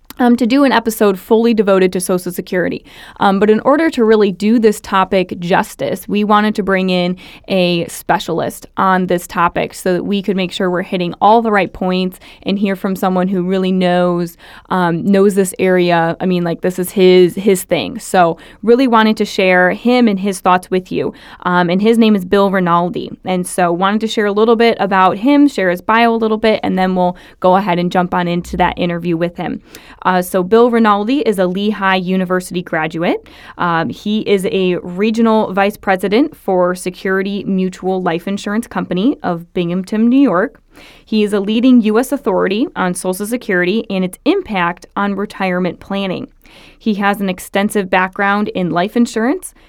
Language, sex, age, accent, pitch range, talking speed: English, female, 20-39, American, 180-220 Hz, 190 wpm